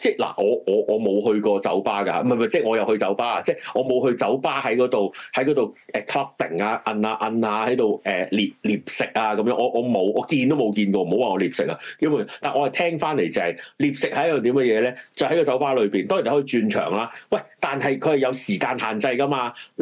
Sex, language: male, Chinese